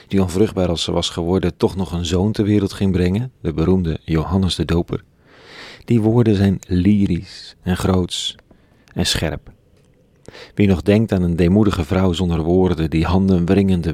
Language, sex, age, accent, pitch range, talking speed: Dutch, male, 40-59, Dutch, 85-100 Hz, 165 wpm